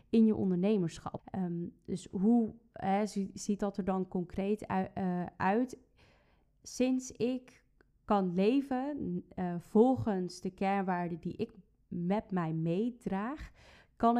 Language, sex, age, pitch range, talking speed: Dutch, female, 20-39, 180-210 Hz, 115 wpm